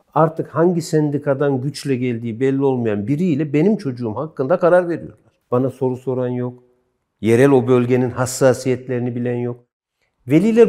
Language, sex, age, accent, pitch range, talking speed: Turkish, male, 60-79, native, 125-165 Hz, 135 wpm